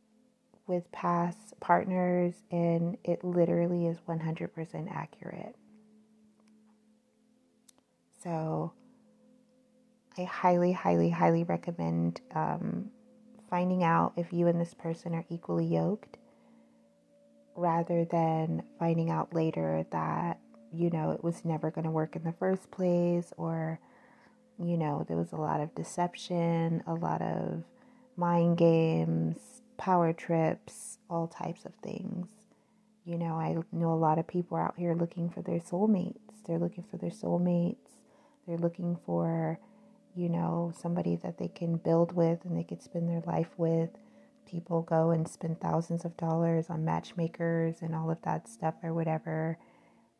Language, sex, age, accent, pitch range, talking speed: English, female, 30-49, American, 160-190 Hz, 140 wpm